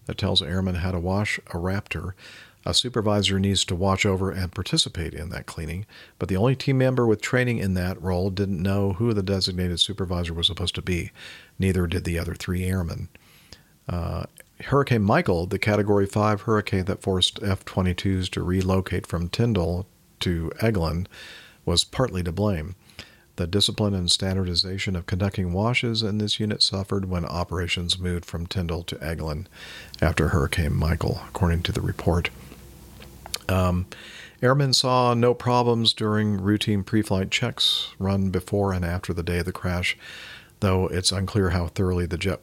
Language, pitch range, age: English, 90-105 Hz, 50-69